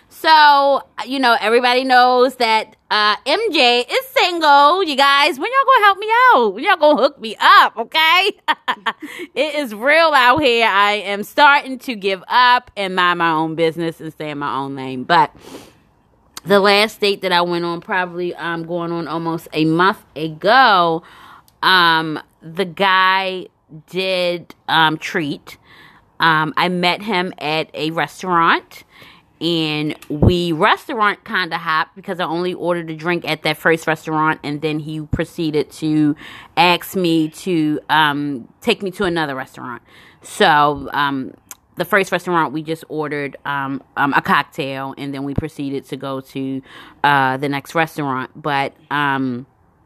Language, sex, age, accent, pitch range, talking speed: English, female, 20-39, American, 155-220 Hz, 160 wpm